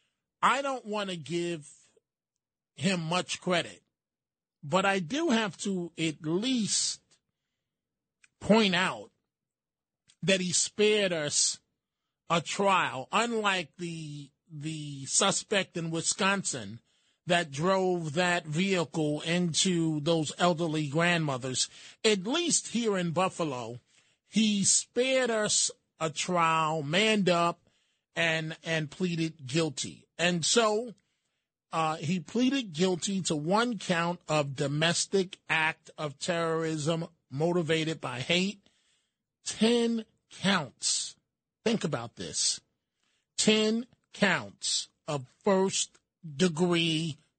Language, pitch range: English, 160-195 Hz